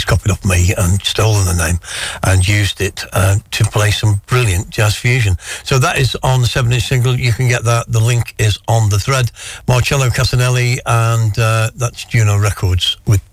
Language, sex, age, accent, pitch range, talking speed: English, male, 60-79, British, 100-120 Hz, 190 wpm